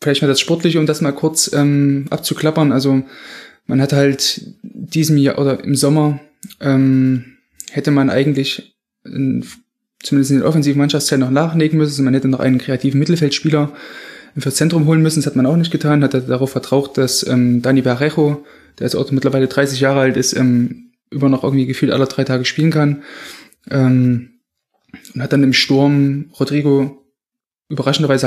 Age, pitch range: 20-39, 130-150 Hz